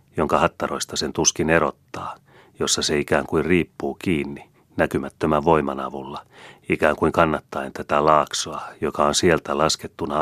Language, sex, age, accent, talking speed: Finnish, male, 30-49, native, 135 wpm